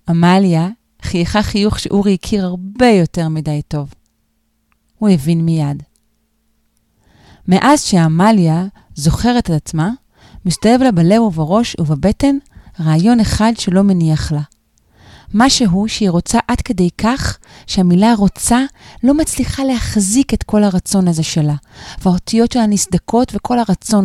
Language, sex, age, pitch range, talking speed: Hebrew, female, 30-49, 180-270 Hz, 120 wpm